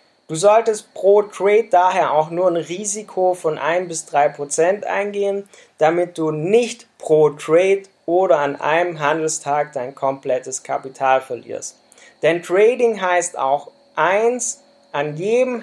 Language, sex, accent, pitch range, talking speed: German, male, German, 155-200 Hz, 125 wpm